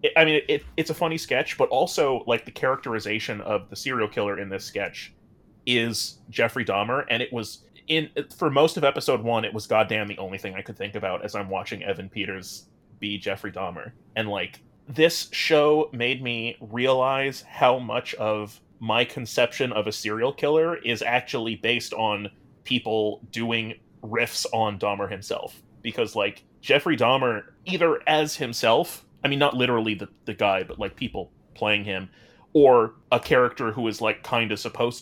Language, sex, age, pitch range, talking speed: English, male, 30-49, 105-130 Hz, 180 wpm